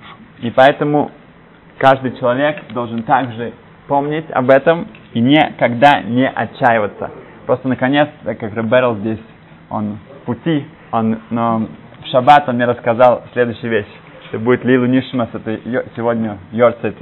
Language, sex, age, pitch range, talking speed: Russian, male, 20-39, 115-145 Hz, 125 wpm